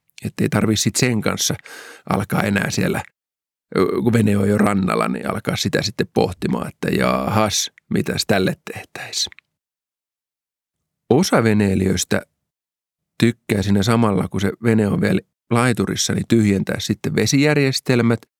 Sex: male